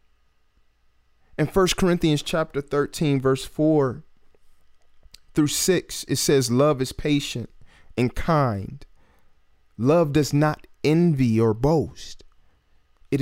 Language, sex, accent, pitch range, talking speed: English, male, American, 95-145 Hz, 105 wpm